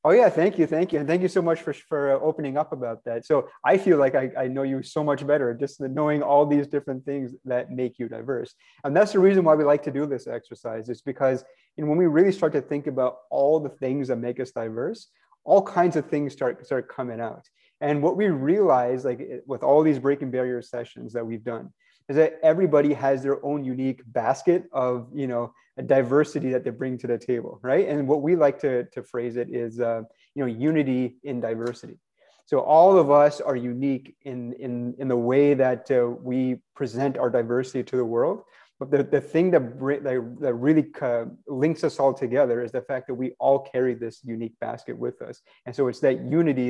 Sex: male